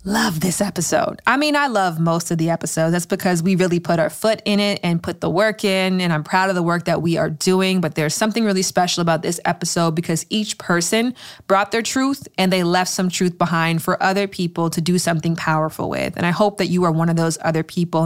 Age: 20-39